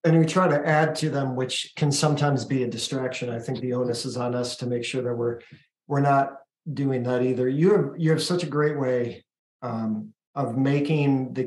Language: English